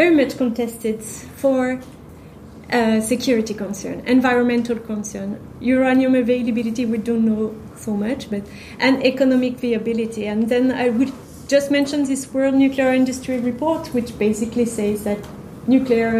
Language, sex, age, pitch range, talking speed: English, female, 30-49, 220-250 Hz, 135 wpm